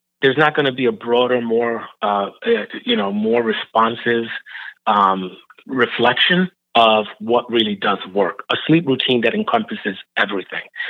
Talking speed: 145 wpm